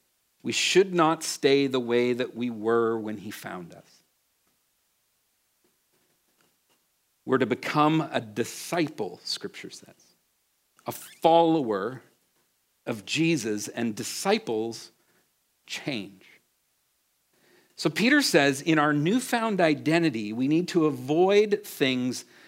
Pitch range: 140-185 Hz